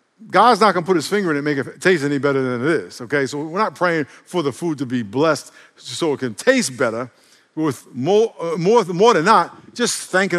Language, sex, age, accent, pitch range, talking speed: English, male, 50-69, American, 125-180 Hz, 255 wpm